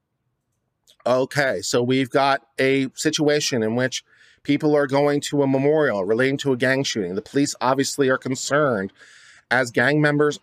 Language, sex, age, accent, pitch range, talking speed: English, male, 40-59, American, 130-165 Hz, 155 wpm